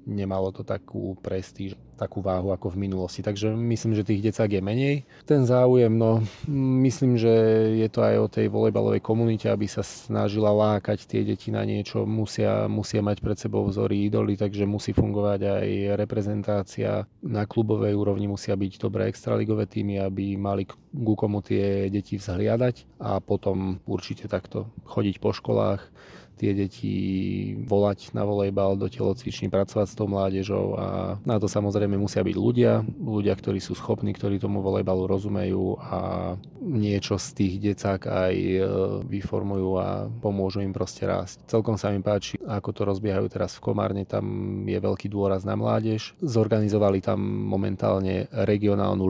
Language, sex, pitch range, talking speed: Slovak, male, 95-110 Hz, 155 wpm